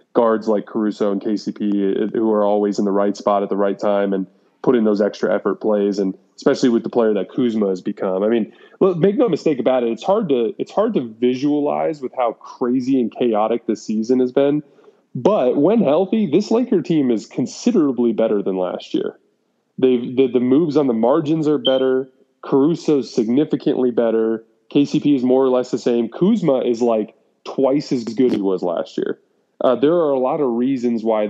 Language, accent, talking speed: English, American, 205 wpm